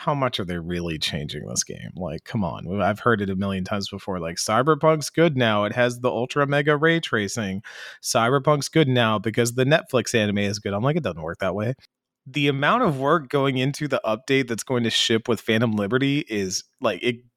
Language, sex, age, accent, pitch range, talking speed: English, male, 30-49, American, 110-150 Hz, 220 wpm